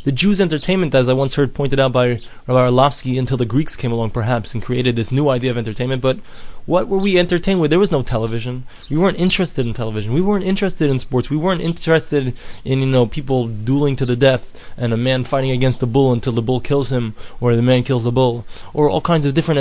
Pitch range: 130-160 Hz